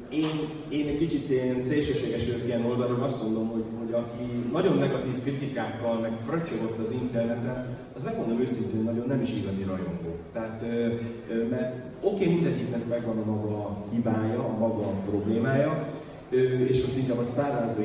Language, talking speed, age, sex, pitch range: Hungarian, 155 wpm, 30-49, male, 110-145 Hz